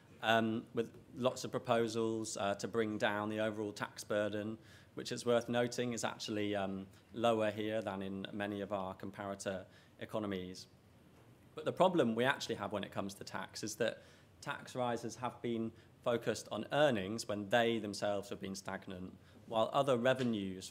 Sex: male